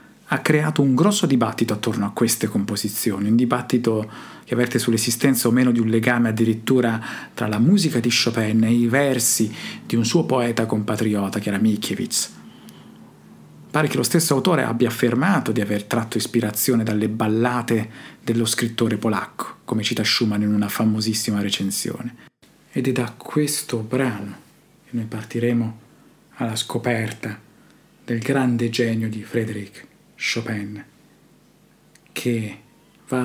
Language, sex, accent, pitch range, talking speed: Italian, male, native, 110-125 Hz, 140 wpm